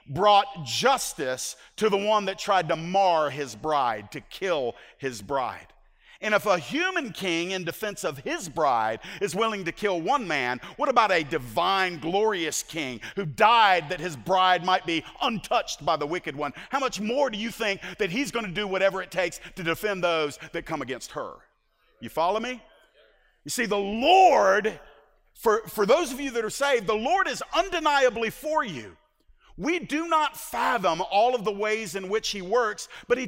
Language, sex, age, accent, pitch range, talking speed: English, male, 50-69, American, 165-230 Hz, 190 wpm